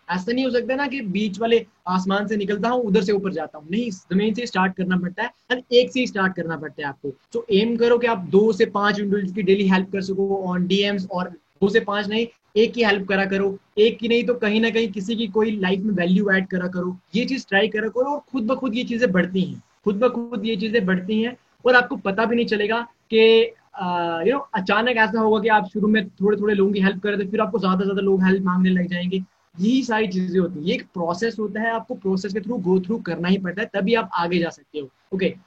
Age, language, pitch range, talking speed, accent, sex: 20-39, Hindi, 185-230 Hz, 260 wpm, native, male